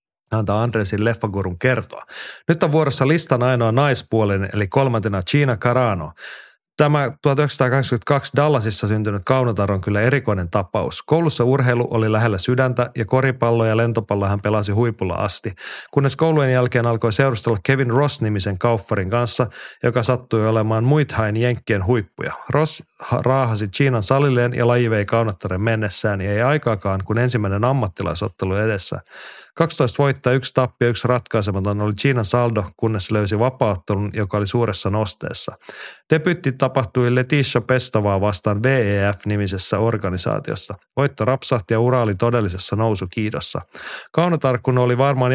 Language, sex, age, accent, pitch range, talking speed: Finnish, male, 30-49, native, 105-130 Hz, 135 wpm